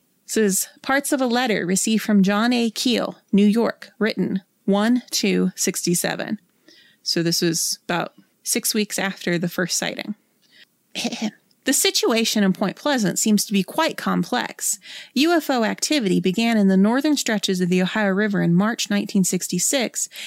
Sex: female